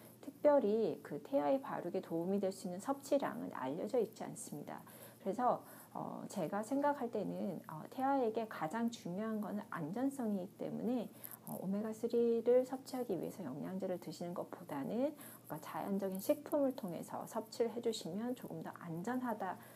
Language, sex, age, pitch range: Korean, female, 40-59, 185-245 Hz